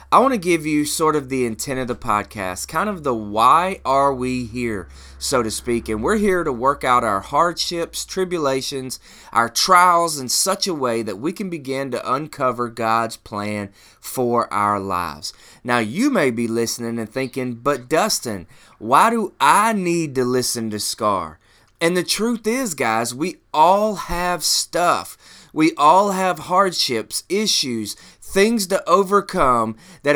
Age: 20-39